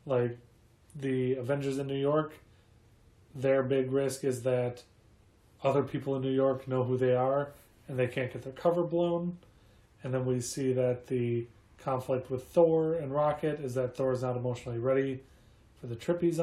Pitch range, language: 120-135 Hz, English